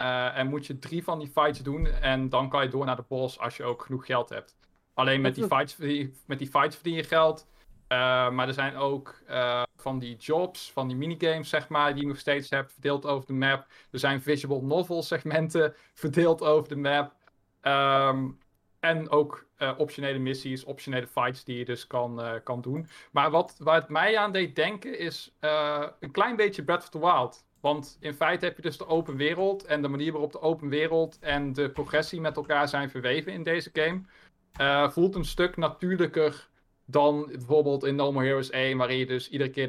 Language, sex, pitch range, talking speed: Dutch, male, 130-160 Hz, 205 wpm